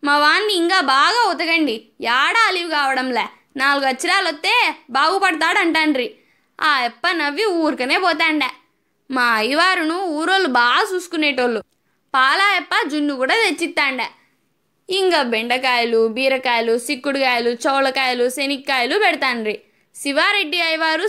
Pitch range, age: 275-340 Hz, 20-39